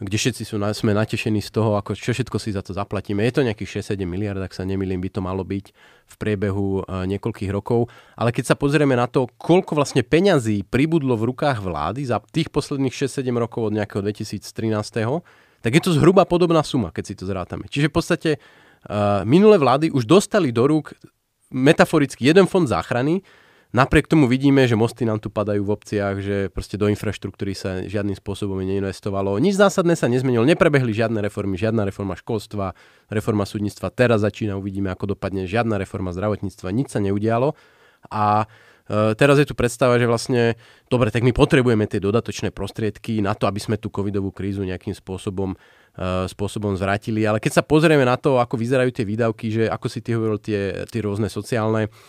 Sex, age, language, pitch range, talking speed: male, 30-49, Slovak, 100-125 Hz, 190 wpm